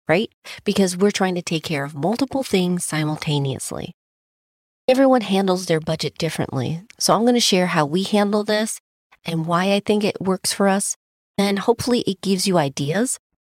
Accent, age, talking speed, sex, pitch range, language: American, 30-49, 175 wpm, female, 155-195 Hz, English